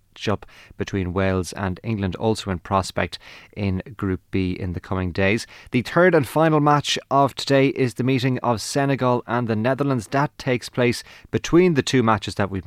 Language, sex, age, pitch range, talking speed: English, male, 30-49, 100-130 Hz, 185 wpm